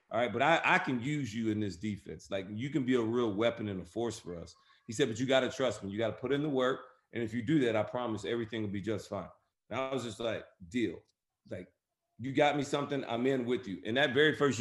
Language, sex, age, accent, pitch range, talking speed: English, male, 30-49, American, 105-130 Hz, 285 wpm